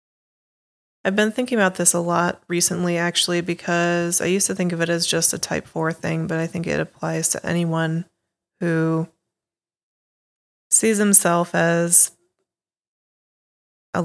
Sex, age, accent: female, 20-39, American